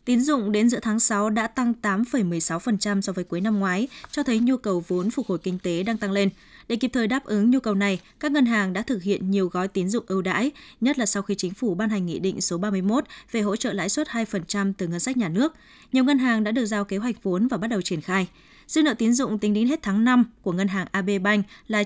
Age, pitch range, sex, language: 20-39, 190-235 Hz, female, Vietnamese